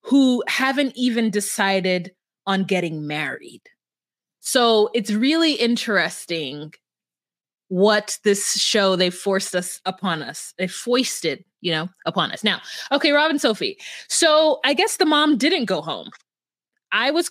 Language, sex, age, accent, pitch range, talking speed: English, female, 20-39, American, 185-235 Hz, 140 wpm